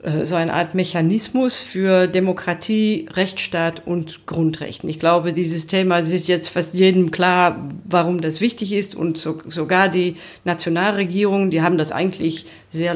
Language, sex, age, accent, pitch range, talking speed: German, female, 40-59, German, 165-190 Hz, 155 wpm